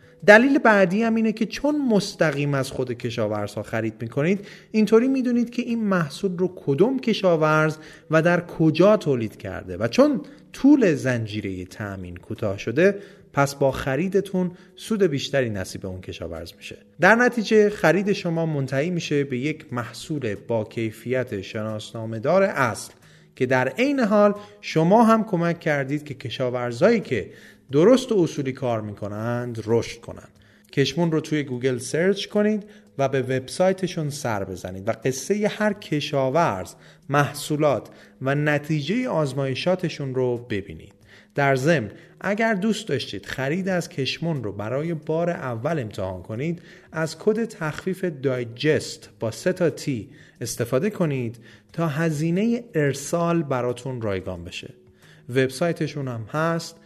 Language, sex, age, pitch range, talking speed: Persian, male, 30-49, 120-185 Hz, 135 wpm